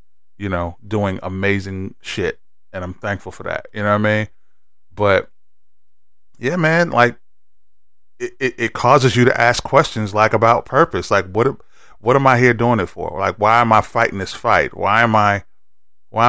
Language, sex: English, male